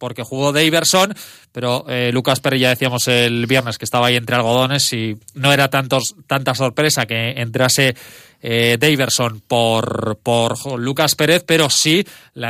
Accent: Spanish